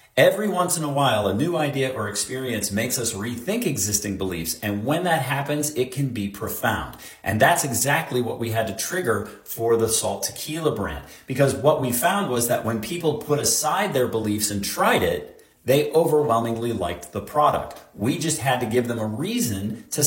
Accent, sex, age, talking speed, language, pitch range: American, male, 40-59, 195 wpm, English, 115-165 Hz